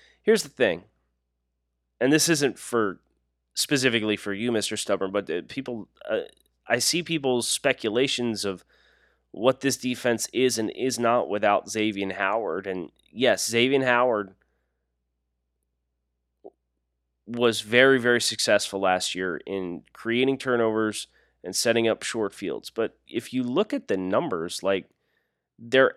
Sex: male